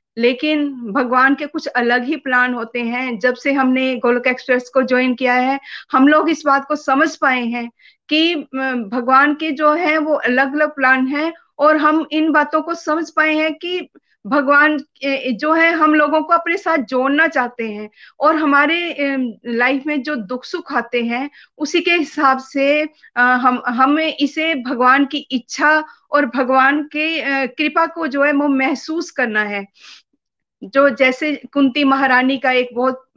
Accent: native